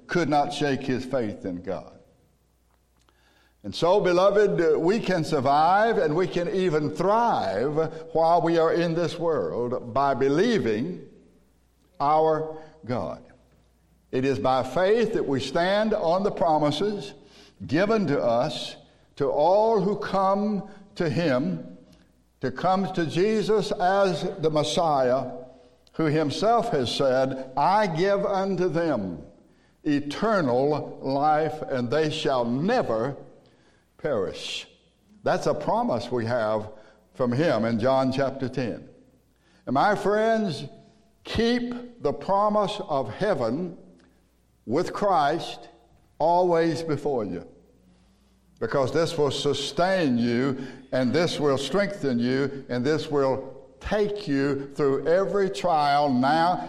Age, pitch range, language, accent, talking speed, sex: 60-79, 135-195 Hz, English, American, 120 wpm, male